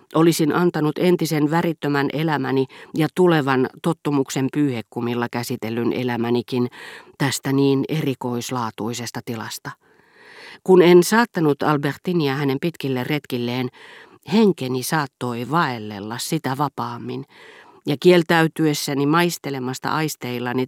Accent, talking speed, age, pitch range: native, 90 wpm, 40-59, 125-160 Hz